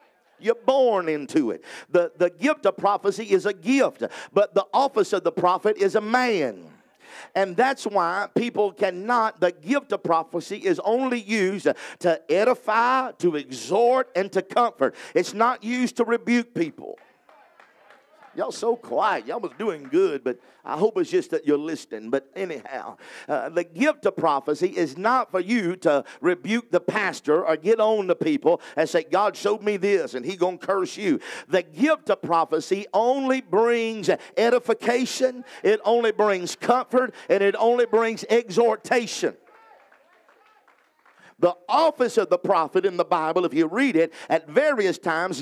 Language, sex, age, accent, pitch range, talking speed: English, male, 50-69, American, 180-240 Hz, 165 wpm